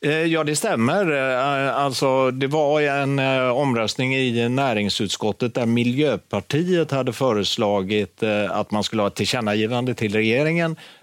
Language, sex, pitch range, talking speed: Swedish, male, 100-125 Hz, 120 wpm